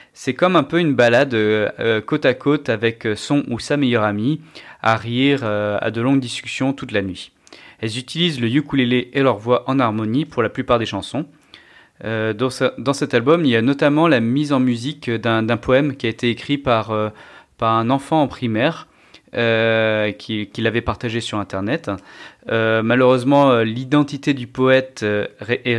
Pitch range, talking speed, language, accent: 110-130 Hz, 185 wpm, French, French